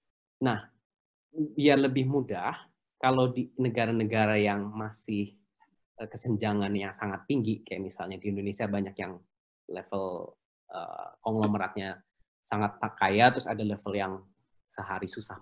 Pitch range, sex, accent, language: 105-150 Hz, male, native, Indonesian